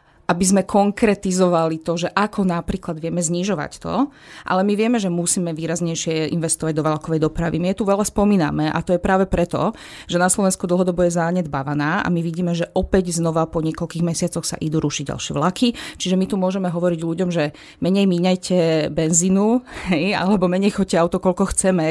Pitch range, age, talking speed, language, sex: 165-200 Hz, 30-49, 185 wpm, Slovak, female